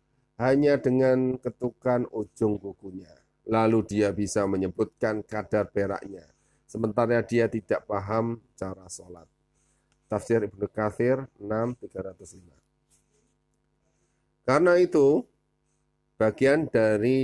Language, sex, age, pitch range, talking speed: Indonesian, male, 30-49, 100-125 Hz, 85 wpm